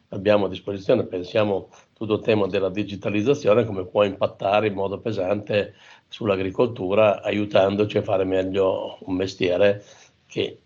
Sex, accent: male, native